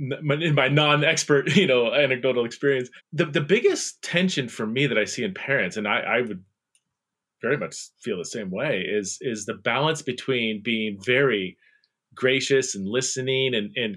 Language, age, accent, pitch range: English, 30-49, American, 110-150 Hz